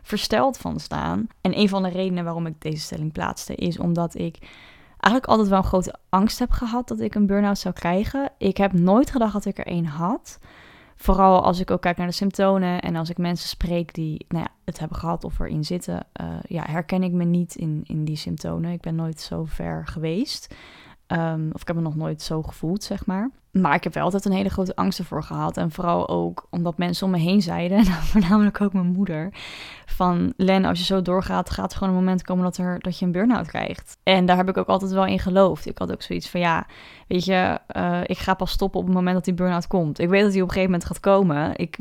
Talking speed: 240 wpm